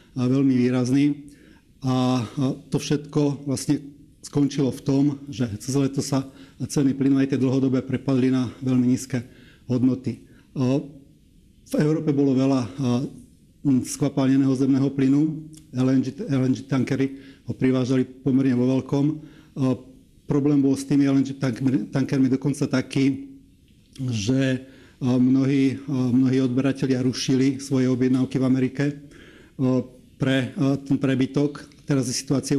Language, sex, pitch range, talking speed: Slovak, male, 130-140 Hz, 110 wpm